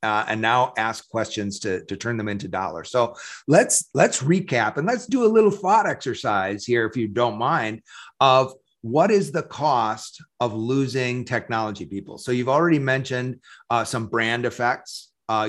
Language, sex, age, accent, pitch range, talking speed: English, male, 30-49, American, 105-125 Hz, 175 wpm